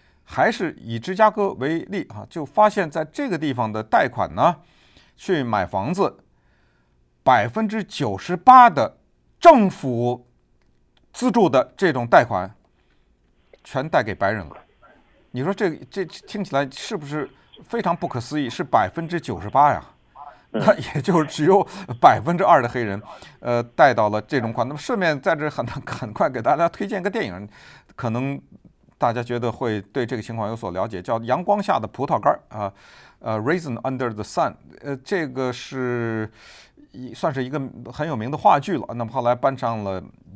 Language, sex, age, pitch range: Chinese, male, 50-69, 110-170 Hz